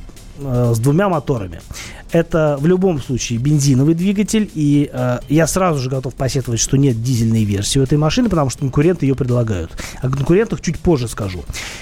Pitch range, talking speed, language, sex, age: 130-175 Hz, 170 wpm, Russian, male, 30-49